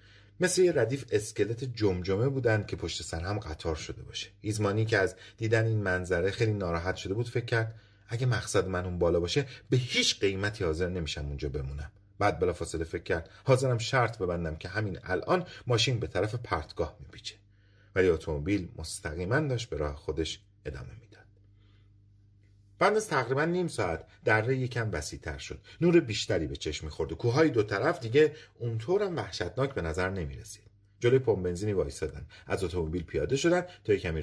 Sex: male